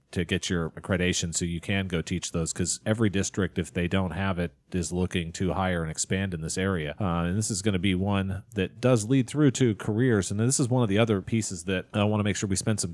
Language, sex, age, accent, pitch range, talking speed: English, male, 30-49, American, 90-105 Hz, 270 wpm